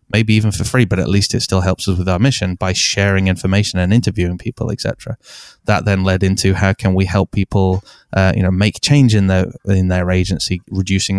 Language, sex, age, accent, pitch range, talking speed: English, male, 20-39, British, 95-105 Hz, 225 wpm